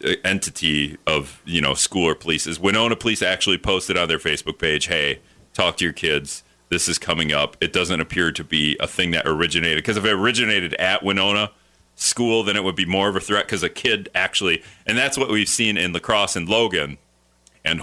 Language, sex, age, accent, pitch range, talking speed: English, male, 40-59, American, 85-110 Hz, 210 wpm